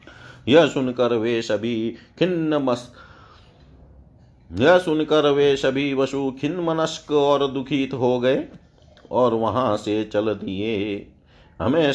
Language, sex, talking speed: Hindi, male, 110 wpm